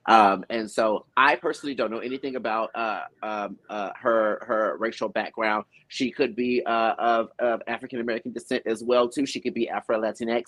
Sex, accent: male, American